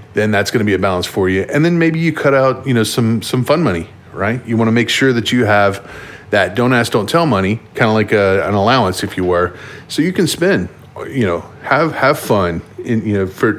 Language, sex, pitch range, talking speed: English, male, 100-120 Hz, 255 wpm